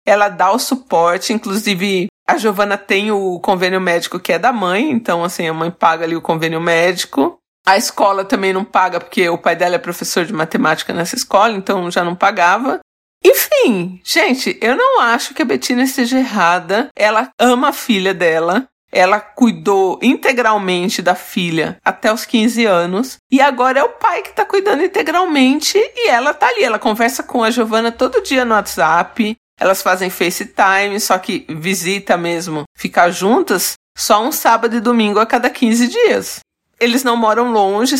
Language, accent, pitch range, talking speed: Portuguese, Brazilian, 180-240 Hz, 175 wpm